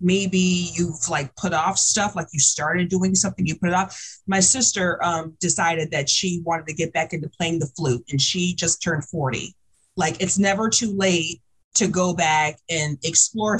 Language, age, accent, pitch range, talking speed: English, 30-49, American, 170-225 Hz, 195 wpm